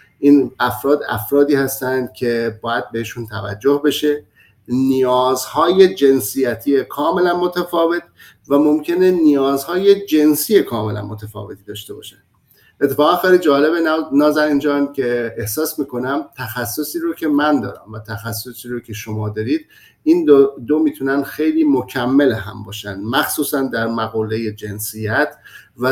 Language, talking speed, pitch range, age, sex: Persian, 125 wpm, 115-150 Hz, 50-69, male